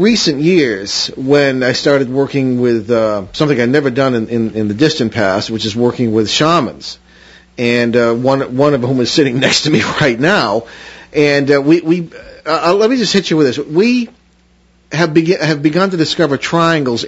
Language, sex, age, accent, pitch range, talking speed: English, male, 40-59, American, 120-150 Hz, 195 wpm